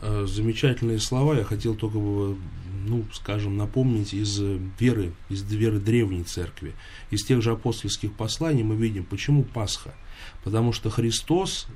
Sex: male